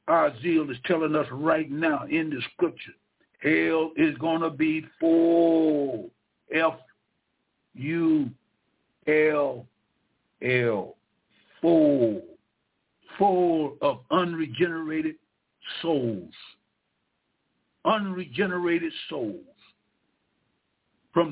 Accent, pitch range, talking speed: American, 135-170 Hz, 70 wpm